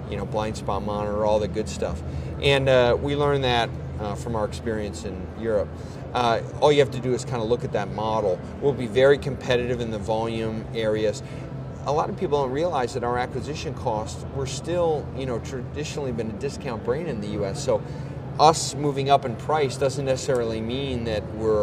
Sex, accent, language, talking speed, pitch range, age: male, American, English, 205 wpm, 115-140 Hz, 30-49